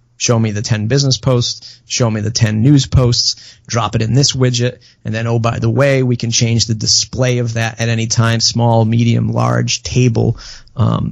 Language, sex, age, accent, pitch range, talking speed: English, male, 30-49, American, 115-125 Hz, 205 wpm